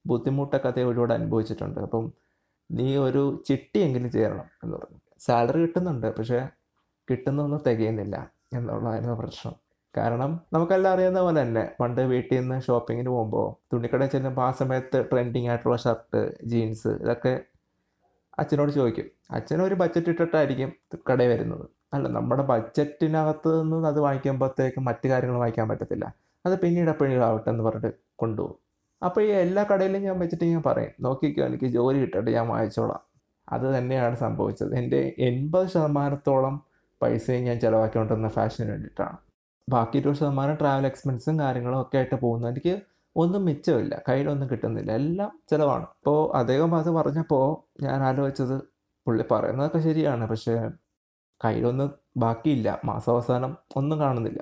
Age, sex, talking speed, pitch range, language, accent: 20-39, male, 130 wpm, 120-155 Hz, Malayalam, native